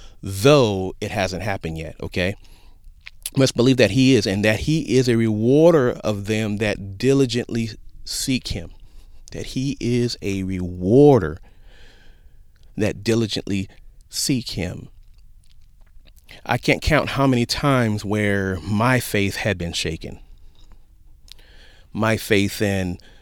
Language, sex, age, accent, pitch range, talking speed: English, male, 30-49, American, 85-110 Hz, 120 wpm